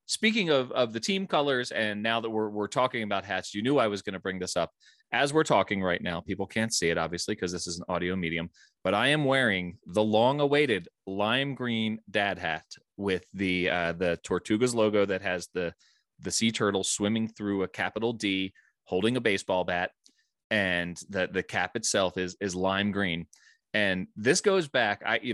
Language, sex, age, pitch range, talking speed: English, male, 30-49, 95-125 Hz, 200 wpm